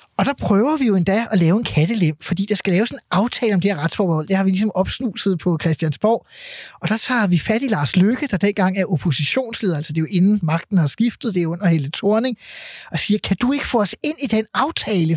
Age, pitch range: 20-39, 175-220 Hz